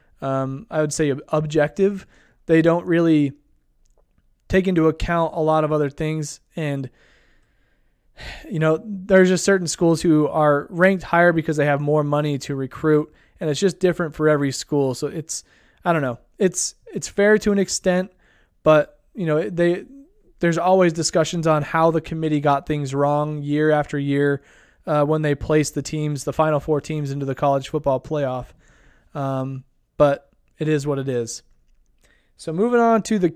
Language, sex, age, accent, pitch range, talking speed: English, male, 20-39, American, 145-180 Hz, 175 wpm